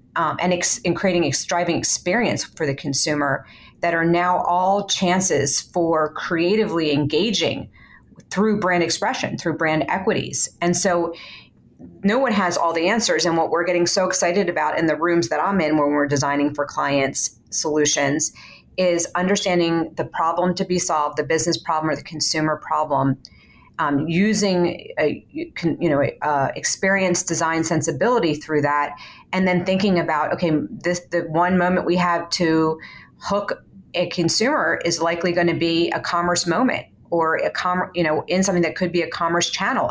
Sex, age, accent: female, 40-59, American